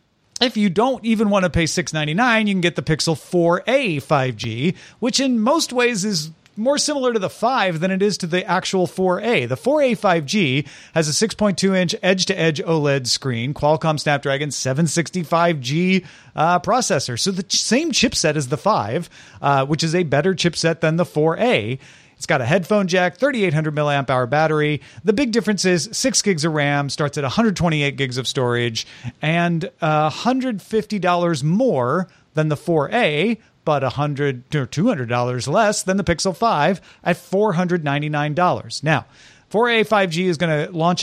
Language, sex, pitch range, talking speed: English, male, 140-195 Hz, 160 wpm